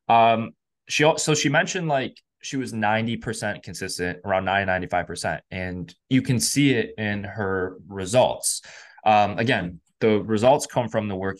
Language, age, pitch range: English, 20-39, 95-130 Hz